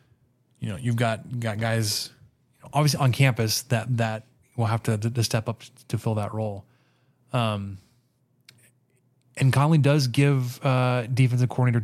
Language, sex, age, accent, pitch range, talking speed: English, male, 20-39, American, 115-130 Hz, 155 wpm